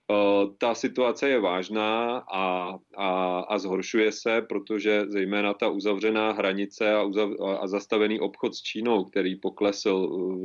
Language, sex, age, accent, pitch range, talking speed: Czech, male, 30-49, native, 95-105 Hz, 140 wpm